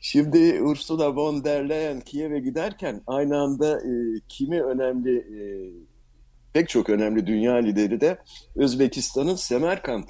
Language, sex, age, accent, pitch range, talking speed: Turkish, male, 60-79, native, 100-155 Hz, 125 wpm